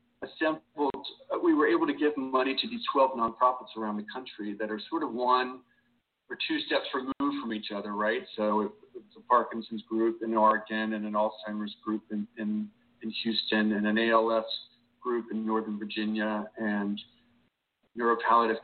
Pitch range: 105-130 Hz